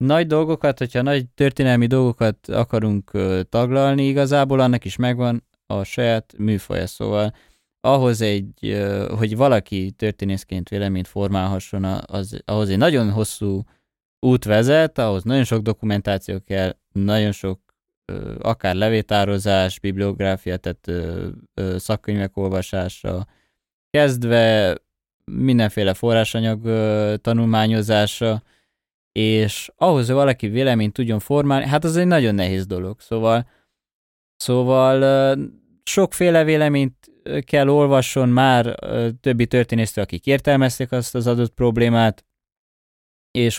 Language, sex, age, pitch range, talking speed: Hungarian, male, 20-39, 100-125 Hz, 105 wpm